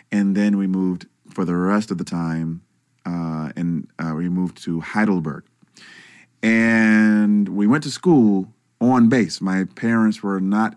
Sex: male